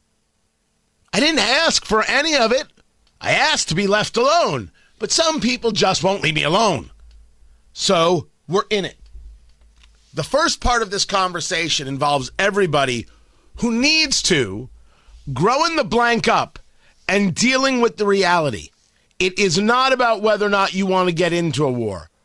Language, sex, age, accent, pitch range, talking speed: English, male, 40-59, American, 135-225 Hz, 160 wpm